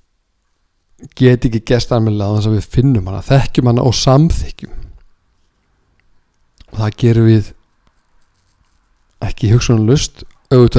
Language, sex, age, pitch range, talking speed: English, male, 50-69, 90-125 Hz, 105 wpm